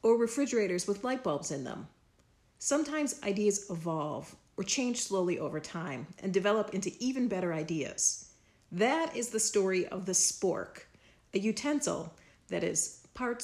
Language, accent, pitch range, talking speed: English, American, 180-240 Hz, 145 wpm